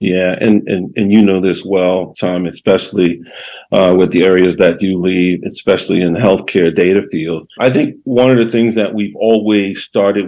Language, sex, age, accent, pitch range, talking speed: English, male, 50-69, American, 95-115 Hz, 195 wpm